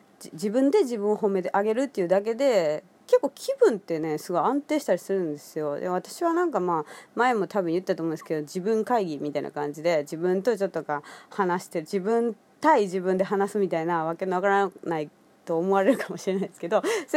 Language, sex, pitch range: Japanese, female, 170-245 Hz